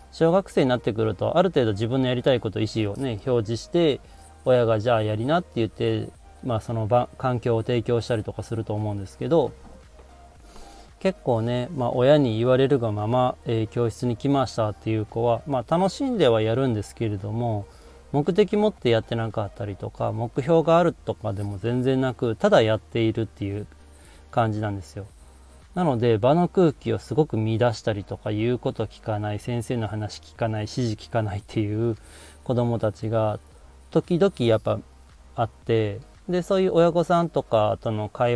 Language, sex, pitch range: Japanese, male, 105-130 Hz